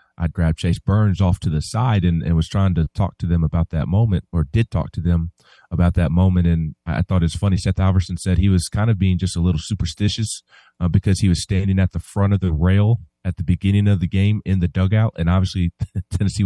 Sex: male